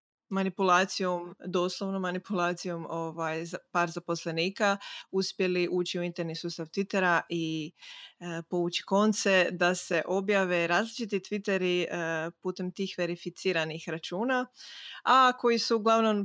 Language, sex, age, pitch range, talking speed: Croatian, female, 20-39, 175-205 Hz, 110 wpm